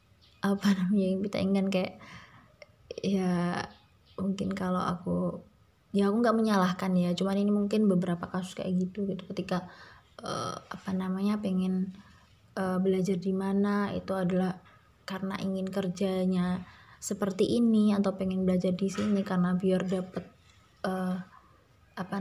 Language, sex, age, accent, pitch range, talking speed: Indonesian, female, 20-39, native, 185-210 Hz, 130 wpm